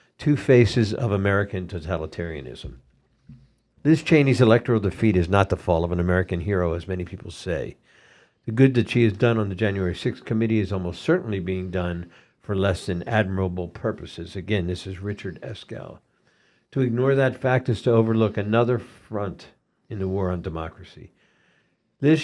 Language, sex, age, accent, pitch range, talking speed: English, male, 60-79, American, 95-115 Hz, 165 wpm